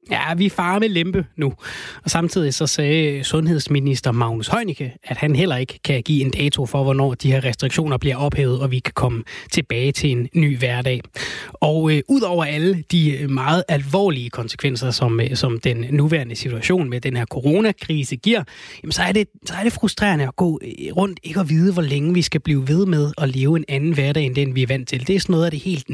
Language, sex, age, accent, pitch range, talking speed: Danish, male, 20-39, native, 130-160 Hz, 215 wpm